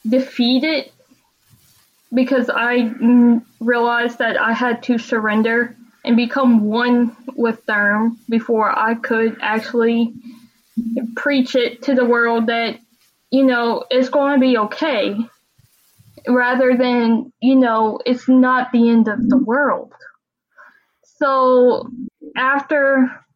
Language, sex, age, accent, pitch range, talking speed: English, female, 10-29, American, 230-265 Hz, 115 wpm